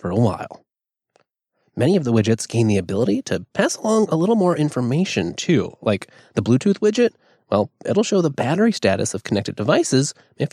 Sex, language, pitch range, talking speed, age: male, English, 115-180 Hz, 180 wpm, 20-39